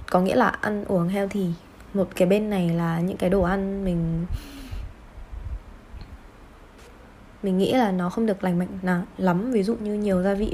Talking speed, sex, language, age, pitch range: 190 wpm, female, Vietnamese, 20-39, 175-230 Hz